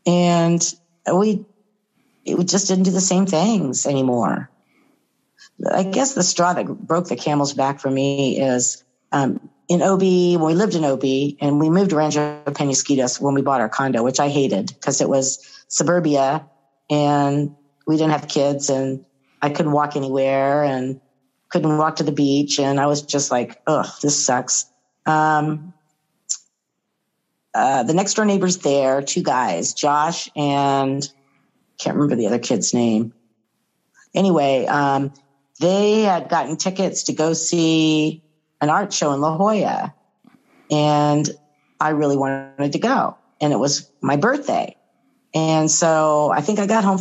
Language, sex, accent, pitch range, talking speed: English, female, American, 140-175 Hz, 155 wpm